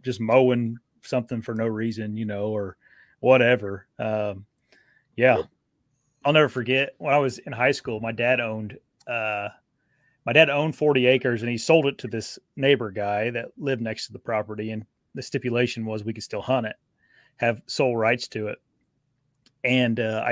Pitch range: 110-130 Hz